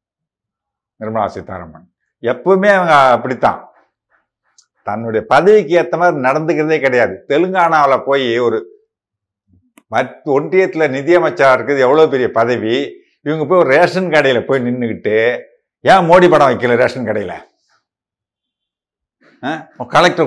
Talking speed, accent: 105 wpm, native